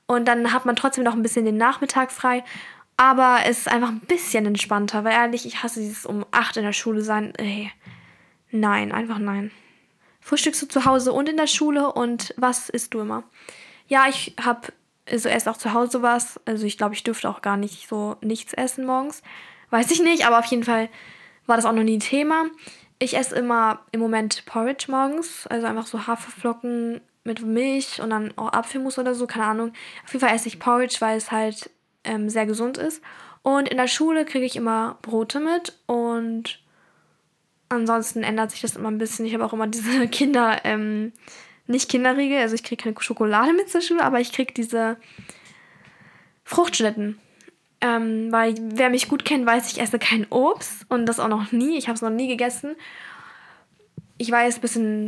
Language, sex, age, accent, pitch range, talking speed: German, female, 10-29, German, 225-260 Hz, 195 wpm